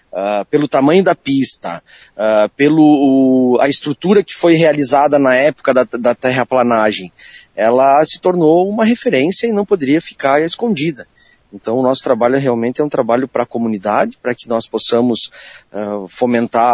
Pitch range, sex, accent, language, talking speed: 115-145 Hz, male, Brazilian, Portuguese, 145 wpm